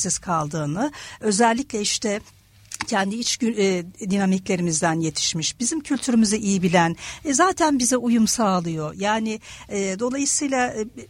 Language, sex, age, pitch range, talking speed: Turkish, female, 50-69, 185-260 Hz, 115 wpm